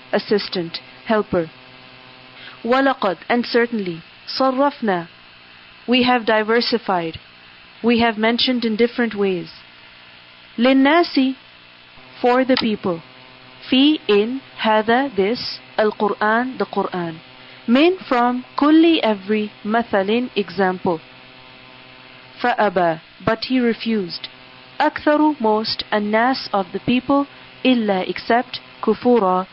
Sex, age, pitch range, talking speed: female, 40-59, 160-240 Hz, 95 wpm